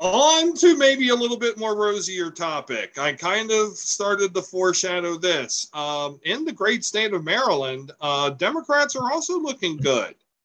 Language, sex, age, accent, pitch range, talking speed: English, male, 40-59, American, 140-190 Hz, 165 wpm